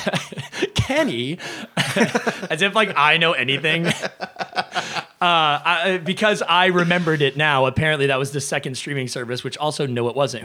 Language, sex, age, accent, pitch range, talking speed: English, male, 30-49, American, 130-165 Hz, 150 wpm